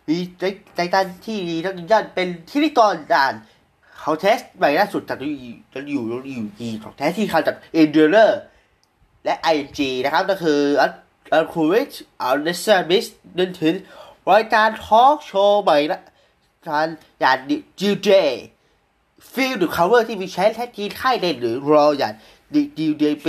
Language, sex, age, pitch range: Thai, male, 20-39, 150-225 Hz